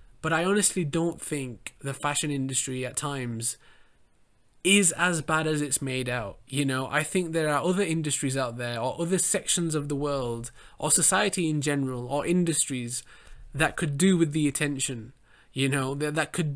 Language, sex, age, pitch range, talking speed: English, male, 20-39, 125-155 Hz, 180 wpm